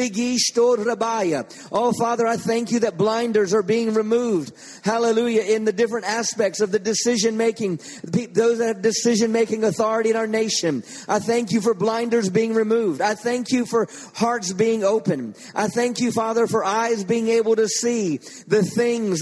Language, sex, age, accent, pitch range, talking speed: English, male, 40-59, American, 215-235 Hz, 160 wpm